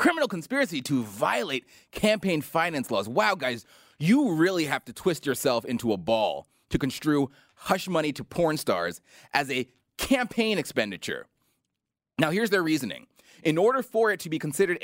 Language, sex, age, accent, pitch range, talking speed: English, male, 30-49, American, 145-200 Hz, 160 wpm